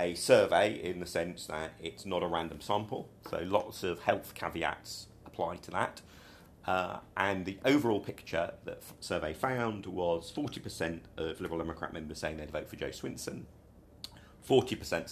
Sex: male